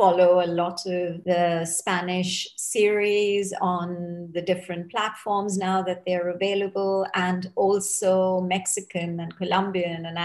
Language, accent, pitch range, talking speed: English, Indian, 180-220 Hz, 125 wpm